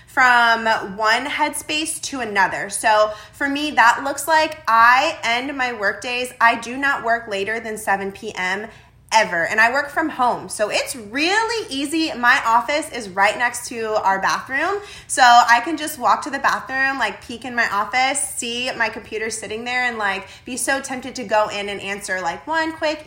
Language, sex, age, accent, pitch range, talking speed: English, female, 20-39, American, 205-275 Hz, 190 wpm